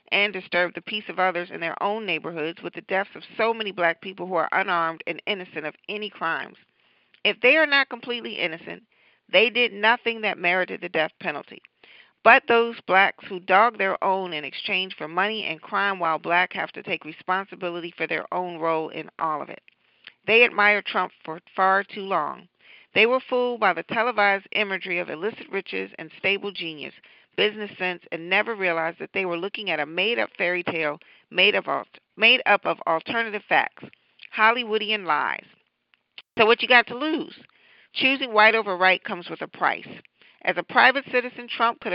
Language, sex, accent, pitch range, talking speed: English, female, American, 175-220 Hz, 185 wpm